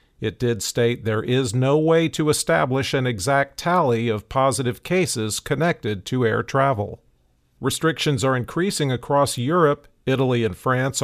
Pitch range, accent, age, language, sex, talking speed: 120-145 Hz, American, 50-69, English, male, 145 wpm